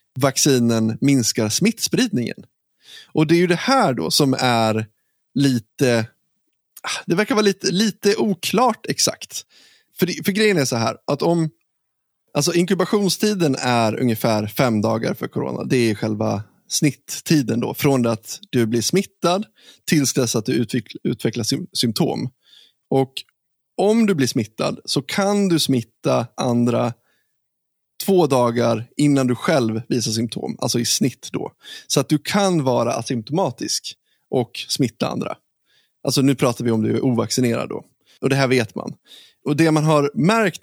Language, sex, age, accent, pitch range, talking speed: Swedish, male, 20-39, native, 120-175 Hz, 150 wpm